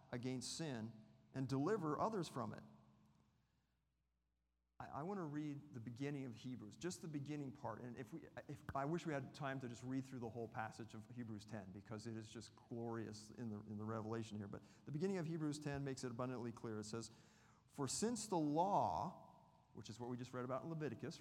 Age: 40-59